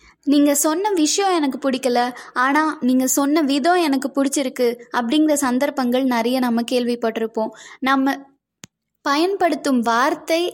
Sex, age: female, 20-39